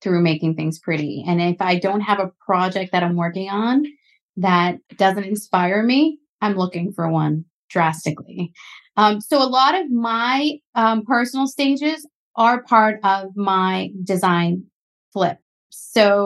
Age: 30-49